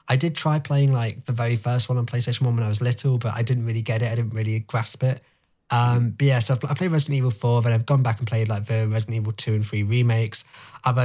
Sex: male